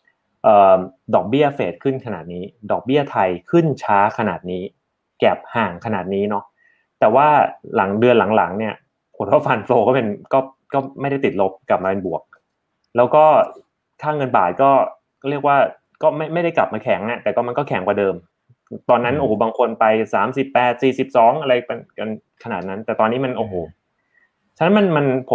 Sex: male